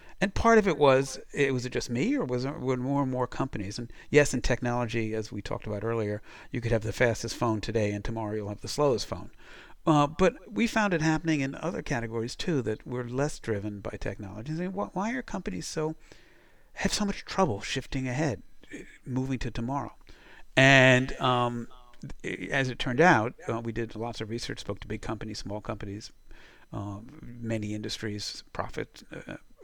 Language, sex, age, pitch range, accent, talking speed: English, male, 50-69, 105-130 Hz, American, 190 wpm